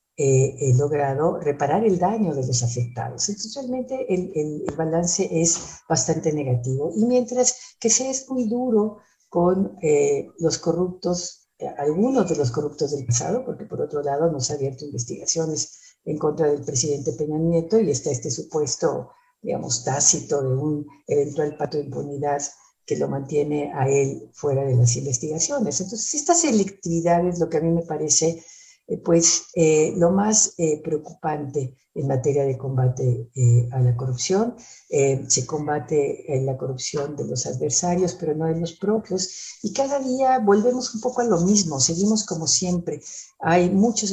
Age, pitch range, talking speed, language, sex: 50-69, 145-205 Hz, 170 wpm, Spanish, female